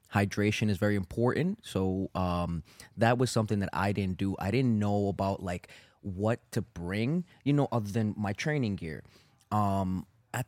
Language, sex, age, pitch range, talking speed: English, male, 20-39, 95-115 Hz, 170 wpm